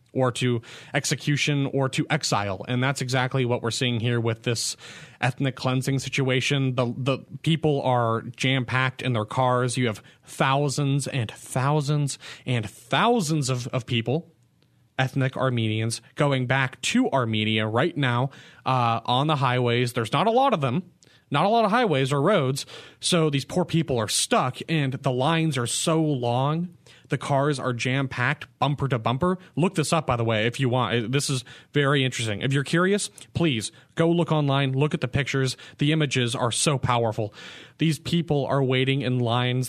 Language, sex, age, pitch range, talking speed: English, male, 30-49, 120-150 Hz, 170 wpm